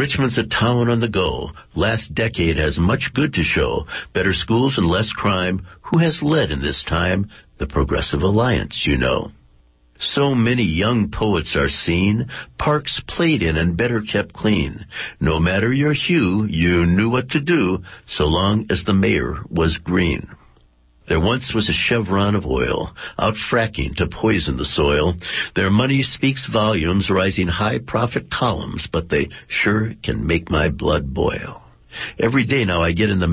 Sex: male